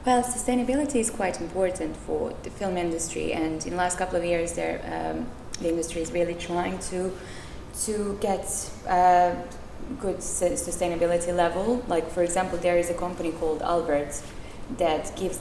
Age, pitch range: 20-39, 145-175 Hz